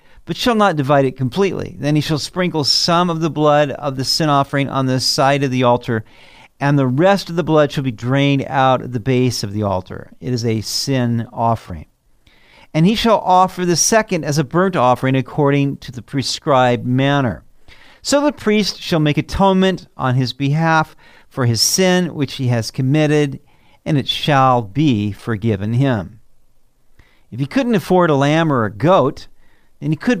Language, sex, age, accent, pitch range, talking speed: English, male, 50-69, American, 125-175 Hz, 185 wpm